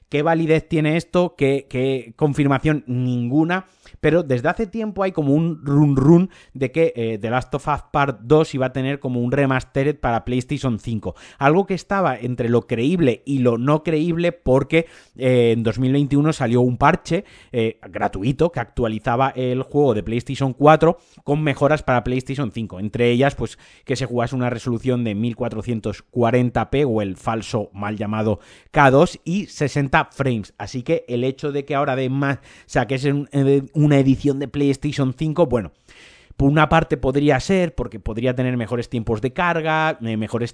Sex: male